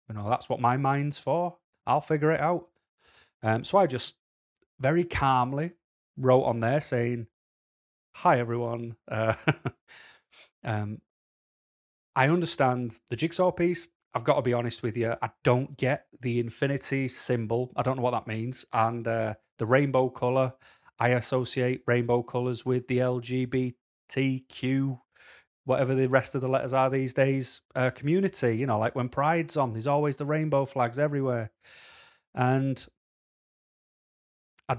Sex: male